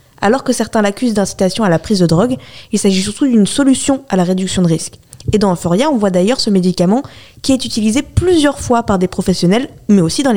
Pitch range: 195-250 Hz